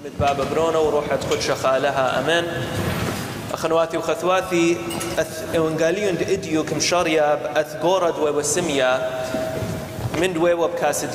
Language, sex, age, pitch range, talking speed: English, male, 30-49, 145-180 Hz, 100 wpm